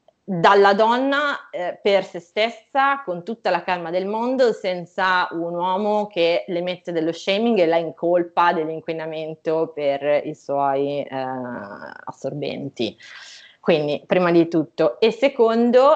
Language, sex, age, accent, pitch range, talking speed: Italian, female, 20-39, native, 160-195 Hz, 130 wpm